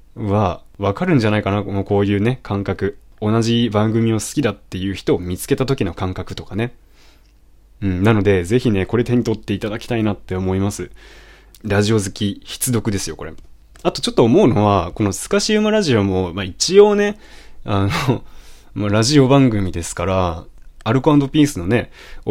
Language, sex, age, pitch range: Japanese, male, 20-39, 95-125 Hz